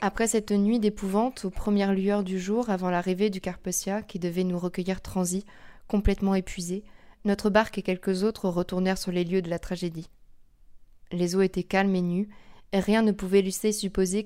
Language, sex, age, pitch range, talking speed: French, female, 20-39, 180-200 Hz, 185 wpm